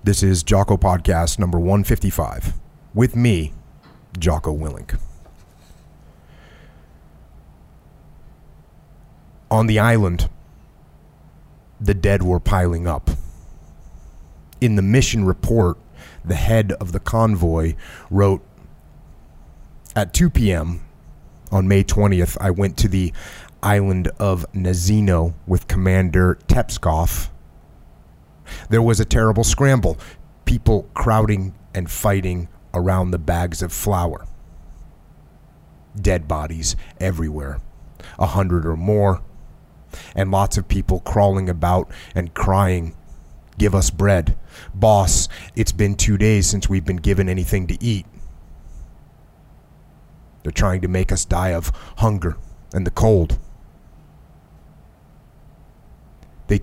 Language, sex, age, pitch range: English, male, 30-49, 80-100 Hz